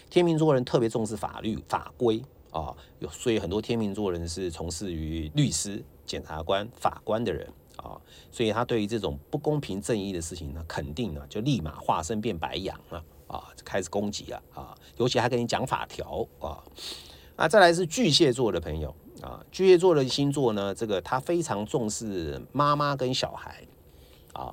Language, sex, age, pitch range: English, male, 50-69, 80-125 Hz